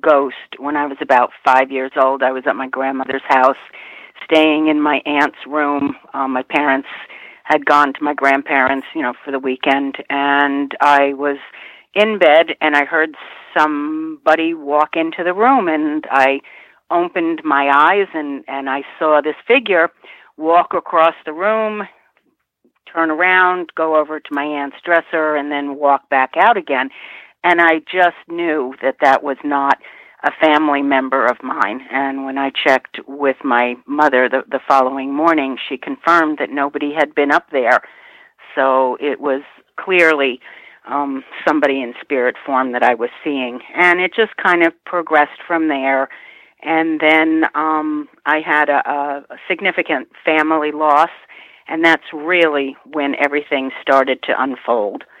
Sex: female